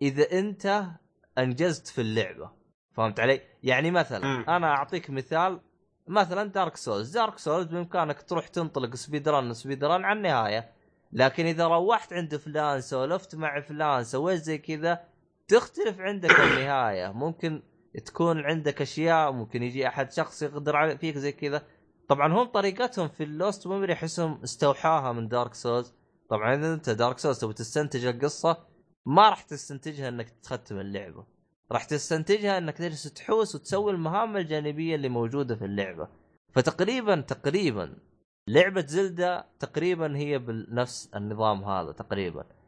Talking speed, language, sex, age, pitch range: 135 wpm, Arabic, male, 20-39, 125-175 Hz